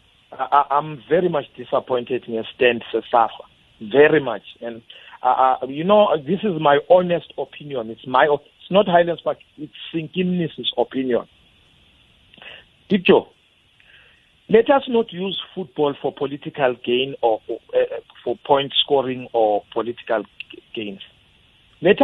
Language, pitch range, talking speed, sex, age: English, 130-185 Hz, 125 wpm, male, 60-79